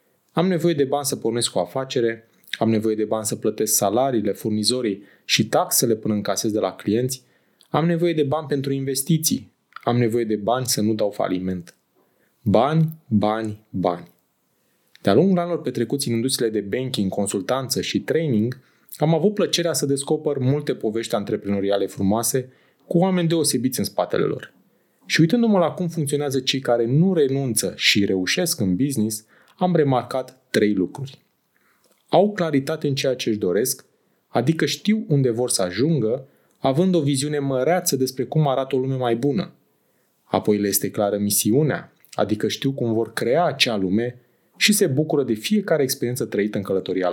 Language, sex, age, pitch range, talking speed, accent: Romanian, male, 20-39, 110-150 Hz, 165 wpm, native